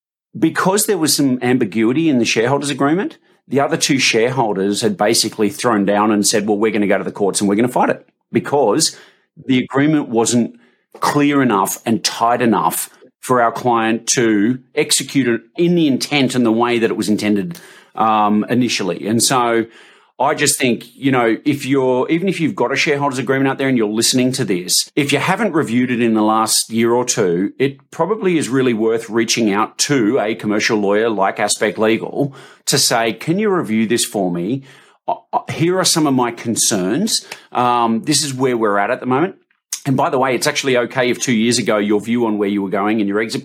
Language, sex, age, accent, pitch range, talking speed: English, male, 40-59, Australian, 110-140 Hz, 210 wpm